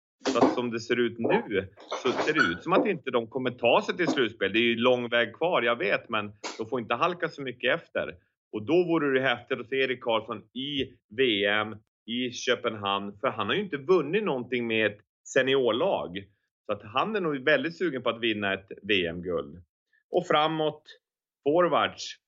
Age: 30-49